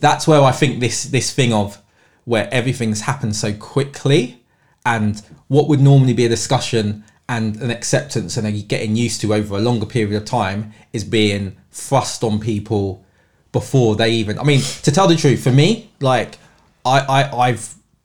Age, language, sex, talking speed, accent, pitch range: 20-39, English, male, 180 wpm, British, 110-135 Hz